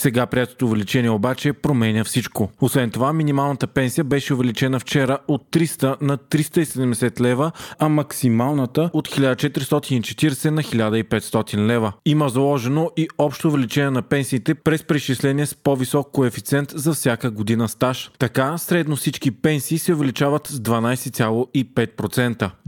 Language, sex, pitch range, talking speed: Bulgarian, male, 120-150 Hz, 130 wpm